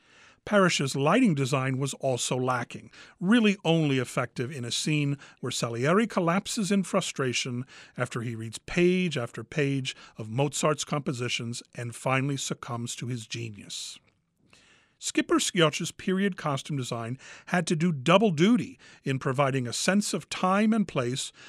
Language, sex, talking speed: English, male, 140 wpm